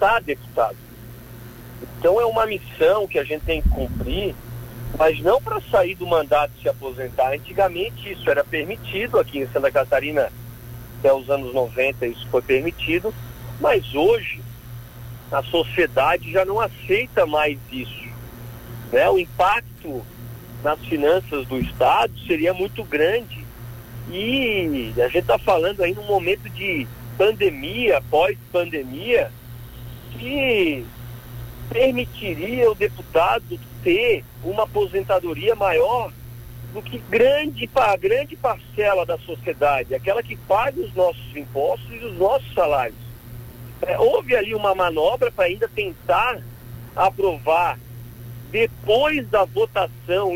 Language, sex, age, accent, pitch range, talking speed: Portuguese, male, 50-69, Brazilian, 120-190 Hz, 125 wpm